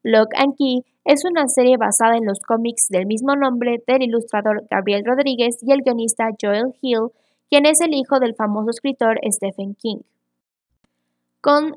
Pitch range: 210-265 Hz